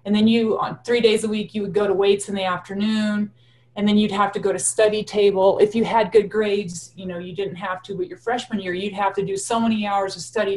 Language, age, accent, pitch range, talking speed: English, 30-49, American, 175-225 Hz, 280 wpm